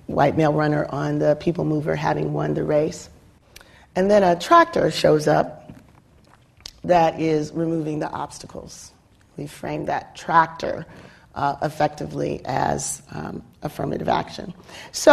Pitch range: 160-190 Hz